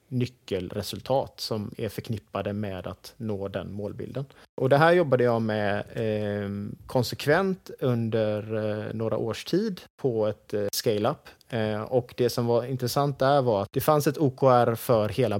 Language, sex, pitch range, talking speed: Swedish, male, 105-130 Hz, 145 wpm